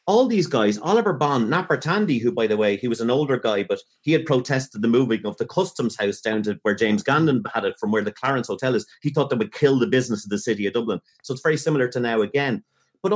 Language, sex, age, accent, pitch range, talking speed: English, male, 30-49, Irish, 110-175 Hz, 270 wpm